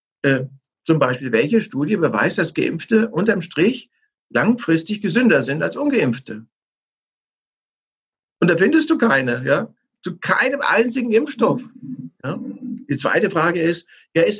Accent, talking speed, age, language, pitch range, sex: German, 135 wpm, 60-79, German, 140-220 Hz, male